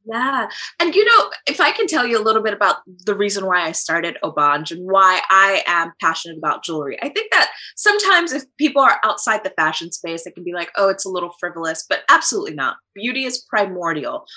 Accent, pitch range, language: American, 165-225 Hz, English